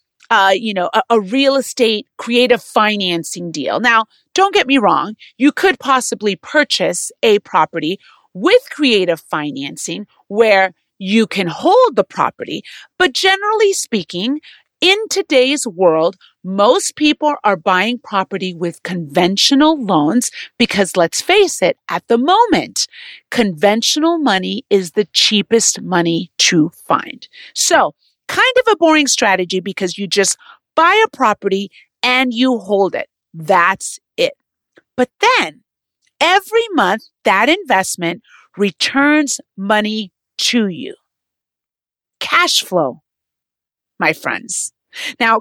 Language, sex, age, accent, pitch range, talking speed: English, female, 40-59, American, 195-305 Hz, 120 wpm